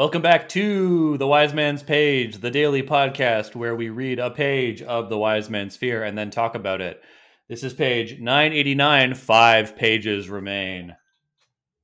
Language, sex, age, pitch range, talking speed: English, male, 30-49, 110-170 Hz, 160 wpm